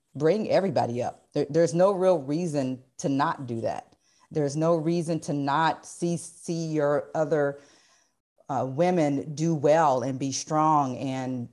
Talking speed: 150 wpm